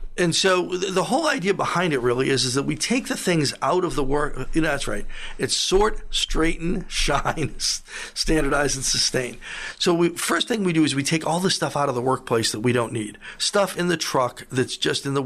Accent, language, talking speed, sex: American, English, 215 wpm, male